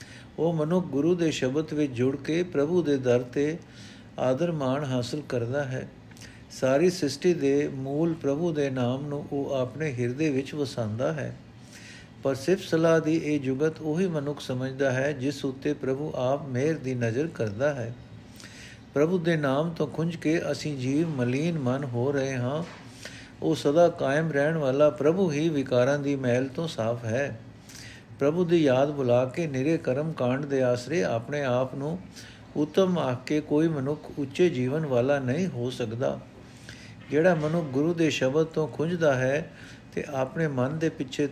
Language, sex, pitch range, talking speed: Punjabi, male, 125-155 Hz, 160 wpm